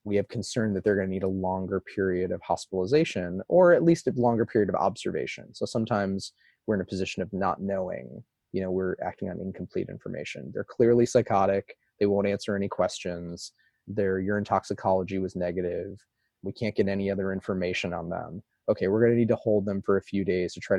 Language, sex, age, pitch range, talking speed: English, male, 20-39, 95-110 Hz, 210 wpm